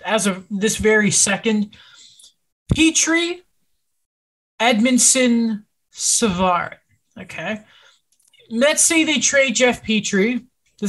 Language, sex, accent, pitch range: English, male, American, 190-235 Hz